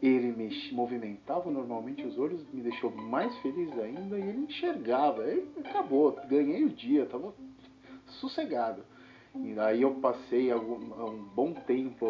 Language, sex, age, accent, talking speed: Portuguese, male, 40-59, Brazilian, 145 wpm